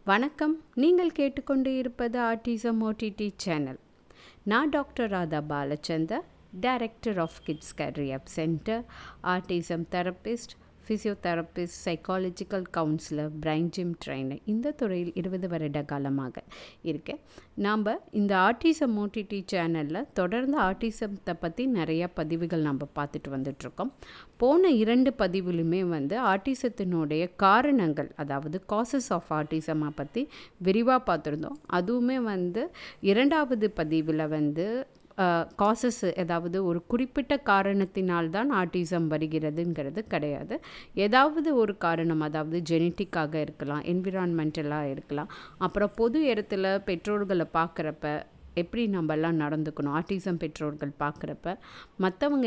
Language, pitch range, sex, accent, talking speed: Tamil, 155-220 Hz, female, native, 100 wpm